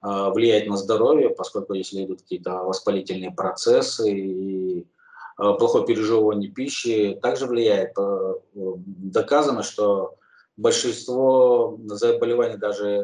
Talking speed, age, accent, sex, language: 90 wpm, 20-39, native, male, Russian